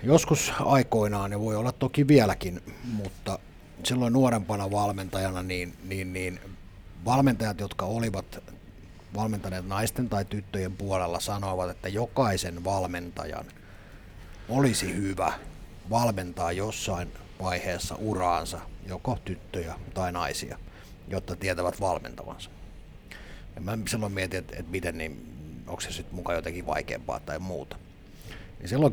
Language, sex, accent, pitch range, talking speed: Finnish, male, native, 90-105 Hz, 115 wpm